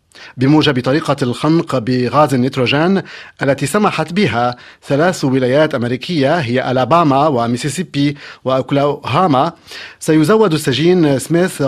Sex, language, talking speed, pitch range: male, Arabic, 95 wpm, 130-155 Hz